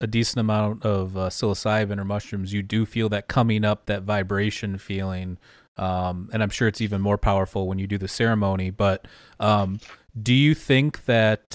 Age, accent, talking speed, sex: 30-49, American, 185 wpm, male